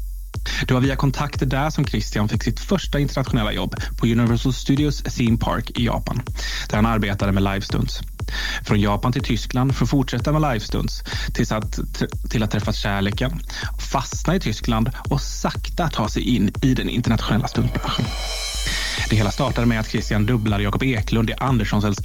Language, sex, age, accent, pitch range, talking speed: Swedish, male, 20-39, native, 105-130 Hz, 165 wpm